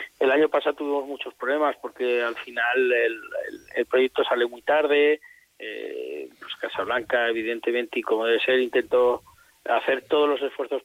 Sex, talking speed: male, 160 wpm